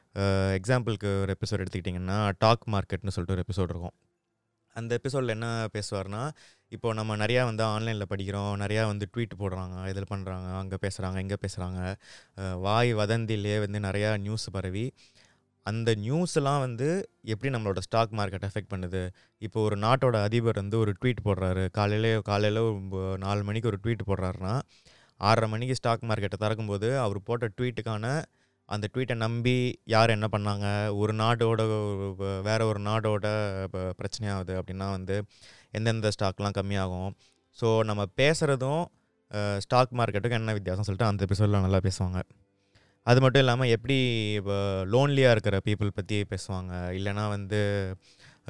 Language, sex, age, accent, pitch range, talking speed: Tamil, male, 20-39, native, 95-115 Hz, 135 wpm